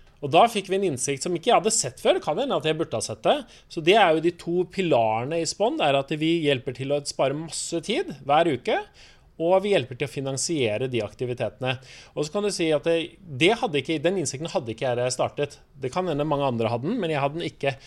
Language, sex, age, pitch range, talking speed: English, male, 30-49, 125-165 Hz, 250 wpm